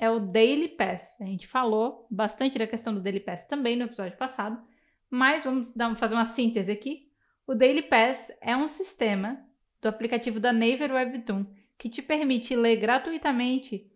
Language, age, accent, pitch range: Portuguese, 10-29, Brazilian, 220-270 Hz